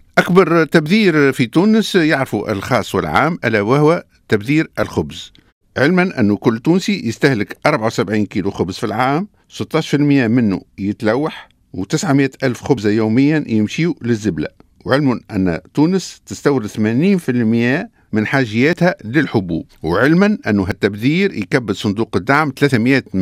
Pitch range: 100-150 Hz